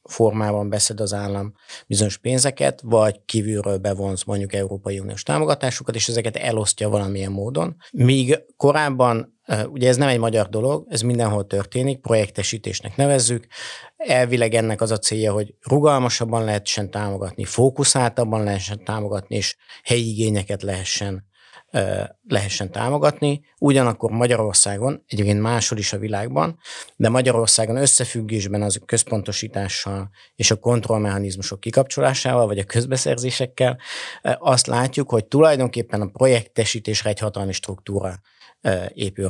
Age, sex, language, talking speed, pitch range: 50-69, male, Hungarian, 120 wpm, 100-120 Hz